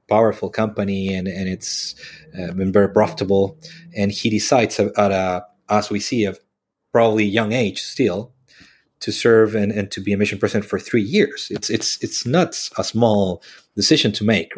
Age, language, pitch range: 30-49, English, 95-110 Hz